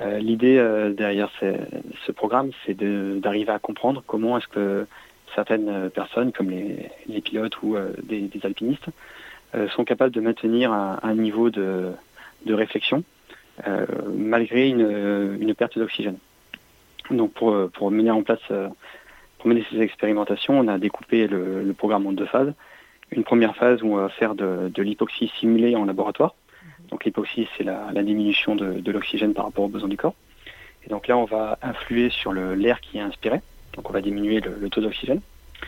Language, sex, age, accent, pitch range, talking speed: French, male, 40-59, French, 100-115 Hz, 175 wpm